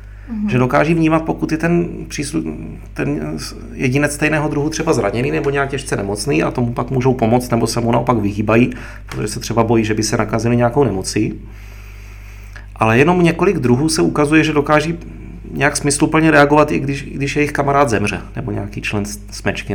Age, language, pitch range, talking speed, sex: 30-49, Czech, 105-145 Hz, 175 wpm, male